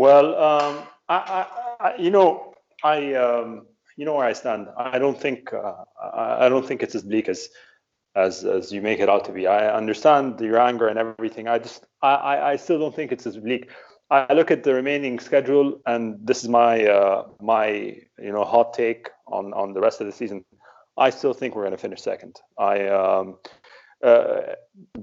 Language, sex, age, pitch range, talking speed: English, male, 30-49, 110-145 Hz, 200 wpm